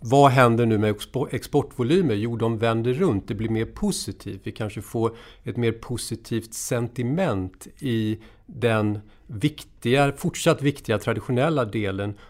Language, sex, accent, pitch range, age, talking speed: Swedish, male, native, 105-125 Hz, 40-59, 130 wpm